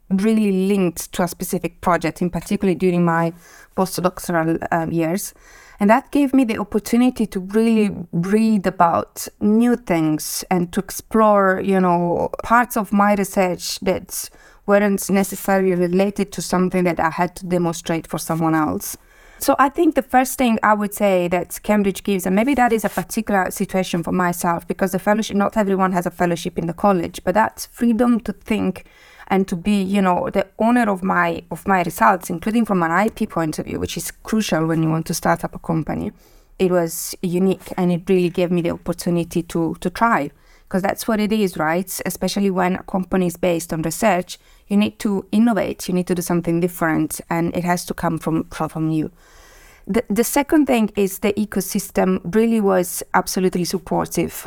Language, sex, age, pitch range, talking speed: English, female, 30-49, 175-210 Hz, 185 wpm